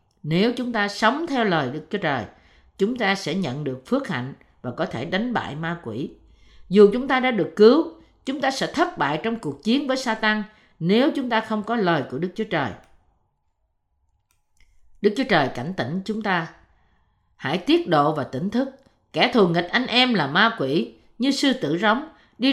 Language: Vietnamese